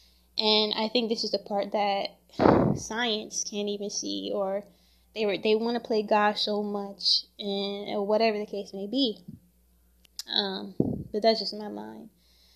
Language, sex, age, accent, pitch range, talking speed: English, female, 10-29, American, 195-220 Hz, 165 wpm